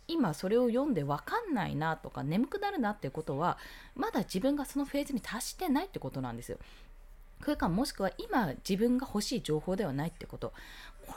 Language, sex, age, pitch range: Japanese, female, 20-39, 180-295 Hz